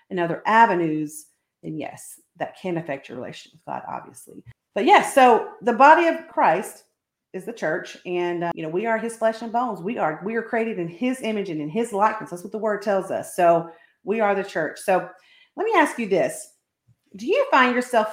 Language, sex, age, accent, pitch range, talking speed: English, female, 40-59, American, 175-250 Hz, 220 wpm